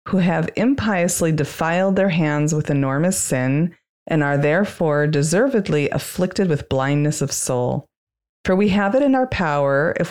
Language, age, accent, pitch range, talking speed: English, 30-49, American, 145-185 Hz, 155 wpm